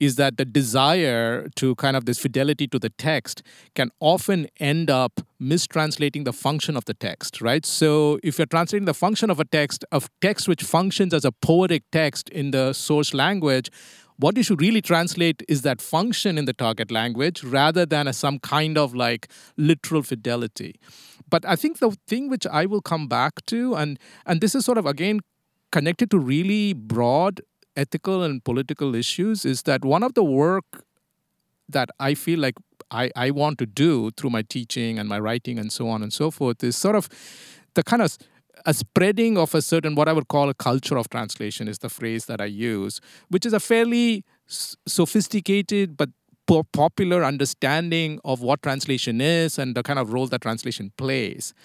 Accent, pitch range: Indian, 130-170 Hz